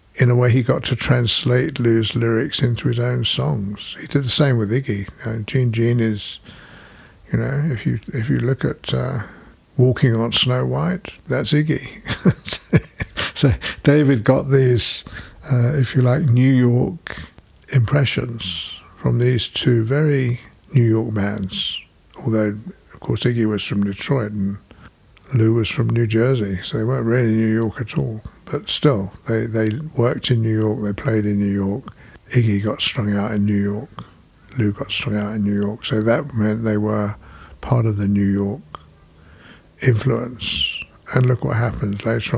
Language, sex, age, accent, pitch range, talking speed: English, male, 60-79, British, 105-125 Hz, 170 wpm